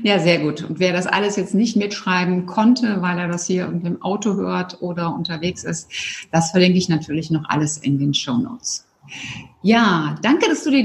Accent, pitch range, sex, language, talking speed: German, 175-225 Hz, female, German, 200 wpm